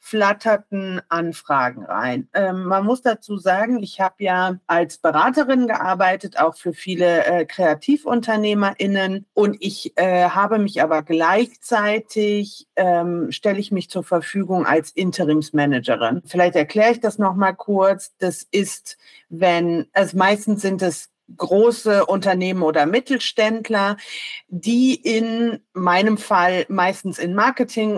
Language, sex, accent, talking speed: German, female, German, 125 wpm